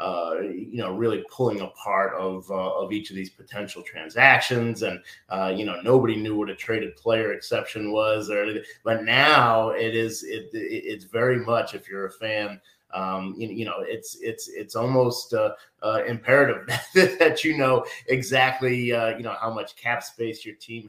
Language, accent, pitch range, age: English, American, 105-120 Hz, 30-49